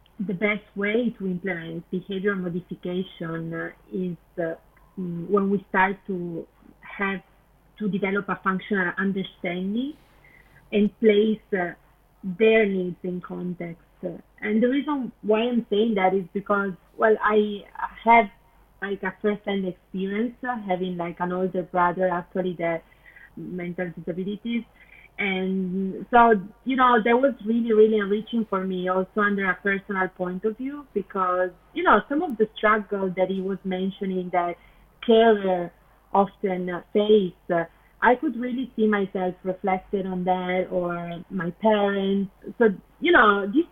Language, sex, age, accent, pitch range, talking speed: English, female, 30-49, Italian, 185-220 Hz, 145 wpm